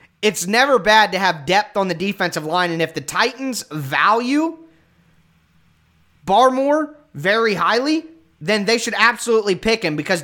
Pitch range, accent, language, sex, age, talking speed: 175-235 Hz, American, English, male, 20-39, 145 wpm